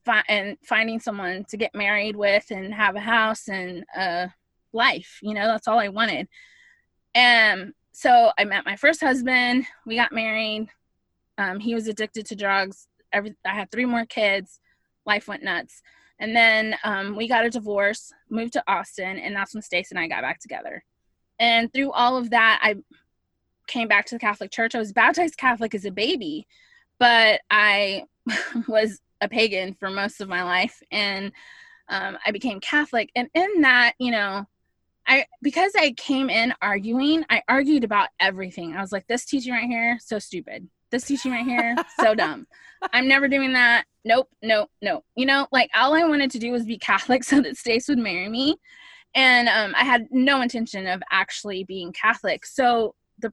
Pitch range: 205-260 Hz